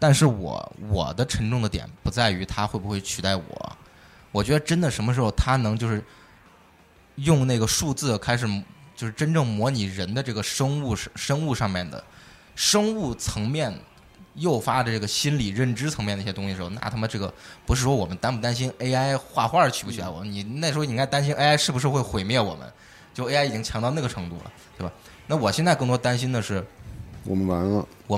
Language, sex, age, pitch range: Chinese, male, 20-39, 100-130 Hz